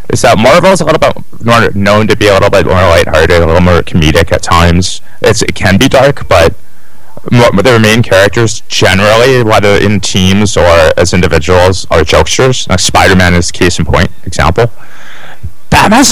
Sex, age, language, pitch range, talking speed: male, 30-49, English, 90-120 Hz, 175 wpm